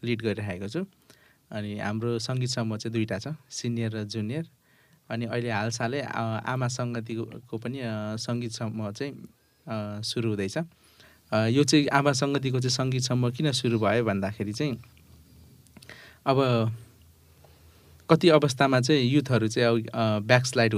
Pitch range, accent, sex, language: 110-130 Hz, native, male, Hindi